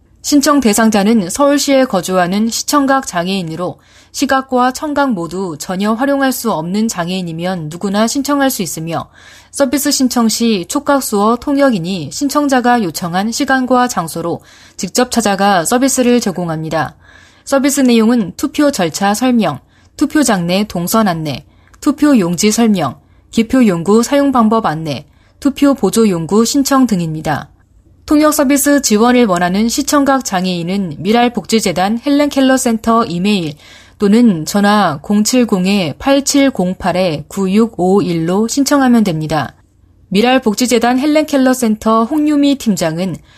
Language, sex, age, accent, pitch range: Korean, female, 20-39, native, 185-265 Hz